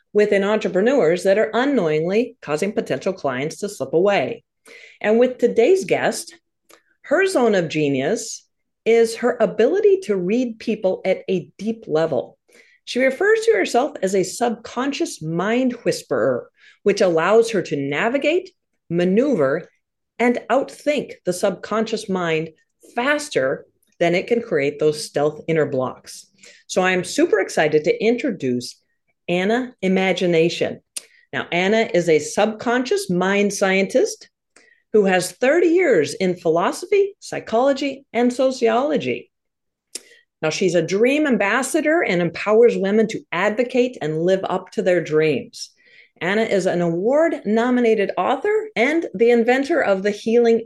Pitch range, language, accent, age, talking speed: 185-260 Hz, English, American, 40-59, 130 wpm